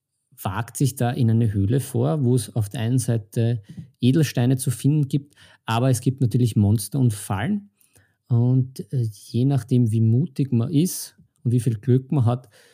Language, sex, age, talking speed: German, male, 50-69, 175 wpm